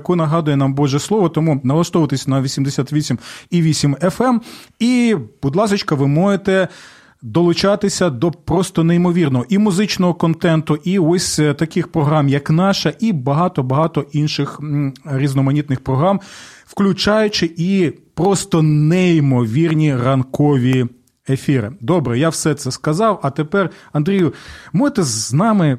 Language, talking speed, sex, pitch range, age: Ukrainian, 115 wpm, male, 140-180 Hz, 30-49